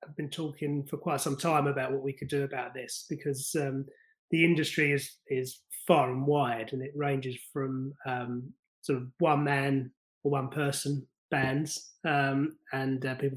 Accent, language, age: British, English, 20-39